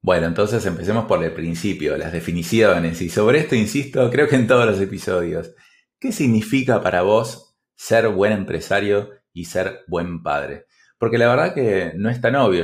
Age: 20-39